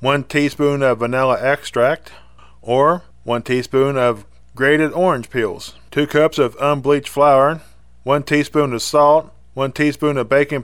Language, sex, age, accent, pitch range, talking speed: English, male, 20-39, American, 130-150 Hz, 140 wpm